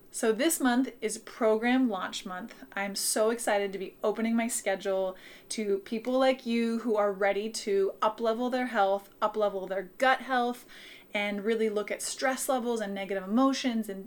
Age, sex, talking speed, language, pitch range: 20-39, female, 170 wpm, English, 210-255 Hz